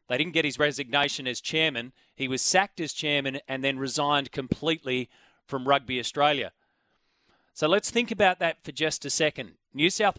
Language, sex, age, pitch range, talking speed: English, male, 30-49, 135-165 Hz, 175 wpm